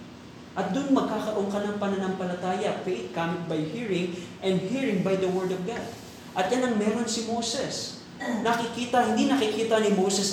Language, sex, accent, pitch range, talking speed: Filipino, male, native, 165-210 Hz, 155 wpm